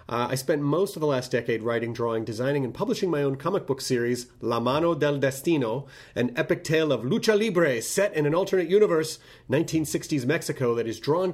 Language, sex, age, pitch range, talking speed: English, male, 30-49, 120-160 Hz, 200 wpm